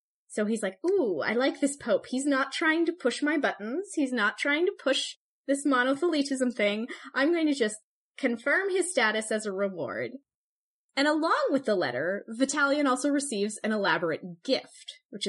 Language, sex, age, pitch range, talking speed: English, female, 20-39, 195-285 Hz, 175 wpm